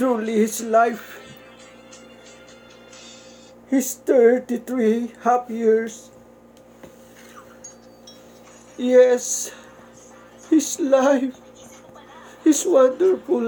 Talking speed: 55 wpm